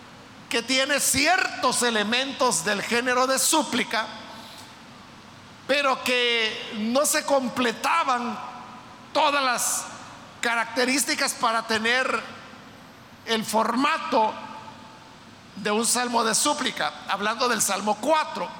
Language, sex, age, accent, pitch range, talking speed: Spanish, male, 50-69, Mexican, 225-270 Hz, 95 wpm